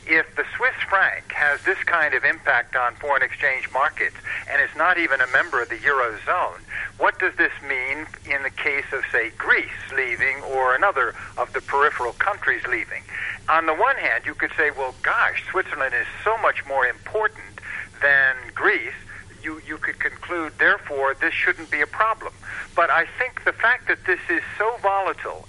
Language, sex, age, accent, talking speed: English, male, 60-79, American, 180 wpm